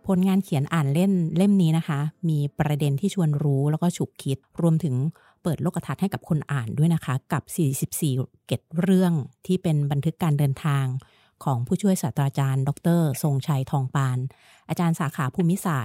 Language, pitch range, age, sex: Thai, 140-175 Hz, 30-49, female